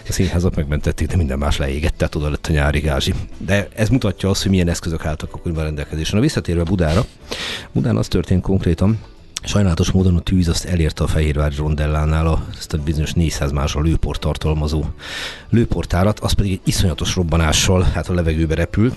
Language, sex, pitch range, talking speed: Hungarian, male, 80-100 Hz, 175 wpm